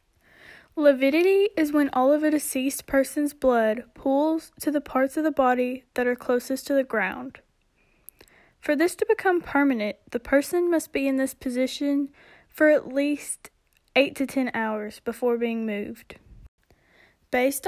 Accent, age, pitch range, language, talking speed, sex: American, 10-29, 245-310 Hz, English, 155 wpm, female